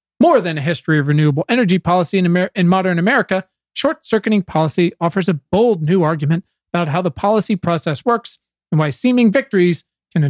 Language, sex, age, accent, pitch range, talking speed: English, male, 40-59, American, 150-190 Hz, 180 wpm